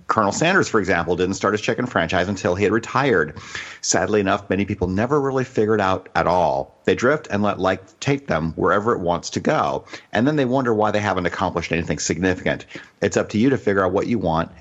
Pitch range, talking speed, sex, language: 90-115 Hz, 230 wpm, male, English